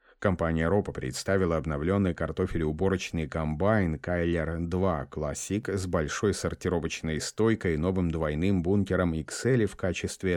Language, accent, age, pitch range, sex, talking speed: Russian, native, 30-49, 80-100 Hz, male, 115 wpm